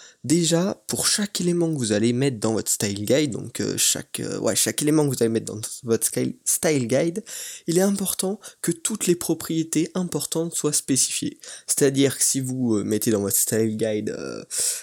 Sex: male